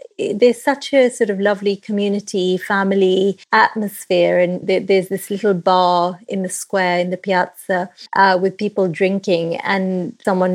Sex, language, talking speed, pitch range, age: female, English, 150 wpm, 180-210 Hz, 30-49